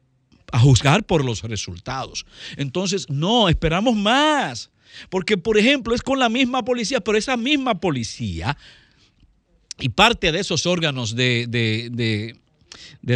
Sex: male